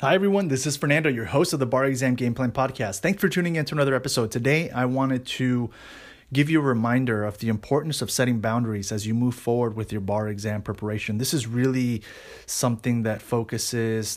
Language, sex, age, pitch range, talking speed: English, male, 30-49, 110-125 Hz, 210 wpm